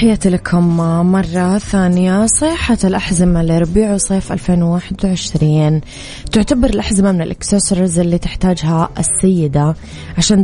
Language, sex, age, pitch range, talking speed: Arabic, female, 20-39, 165-195 Hz, 100 wpm